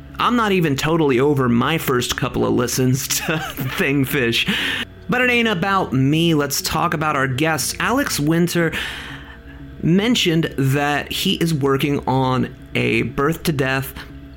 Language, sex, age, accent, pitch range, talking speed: English, male, 30-49, American, 125-170 Hz, 135 wpm